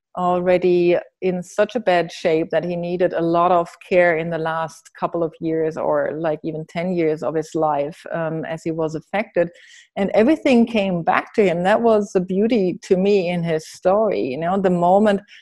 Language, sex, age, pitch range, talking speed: English, female, 30-49, 170-195 Hz, 200 wpm